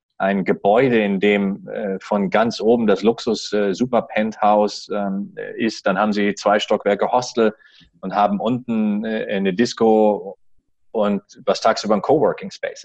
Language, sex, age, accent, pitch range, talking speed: German, male, 30-49, German, 95-120 Hz, 130 wpm